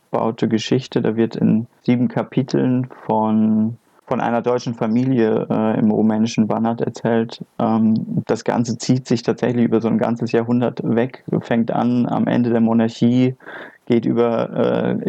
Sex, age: male, 20-39